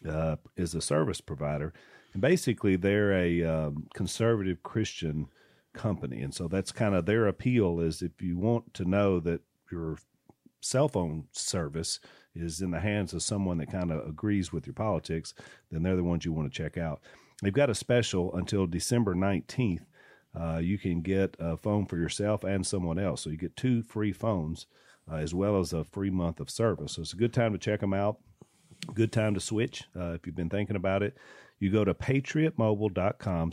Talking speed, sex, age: 195 wpm, male, 40-59